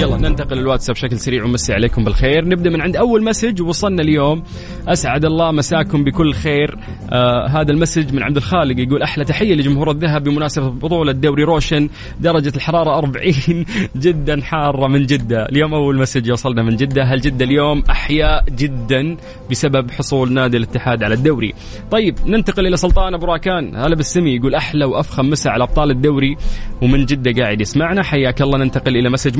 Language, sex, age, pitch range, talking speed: English, male, 20-39, 125-160 Hz, 155 wpm